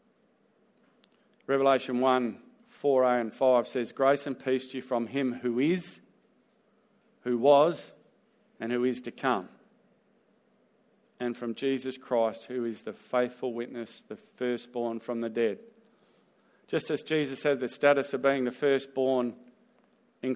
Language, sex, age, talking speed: English, male, 40-59, 140 wpm